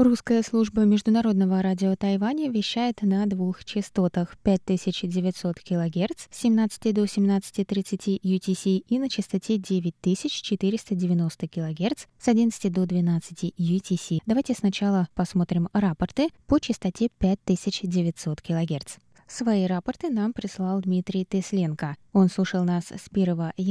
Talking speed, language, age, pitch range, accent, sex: 110 wpm, Russian, 20-39, 175-205 Hz, native, female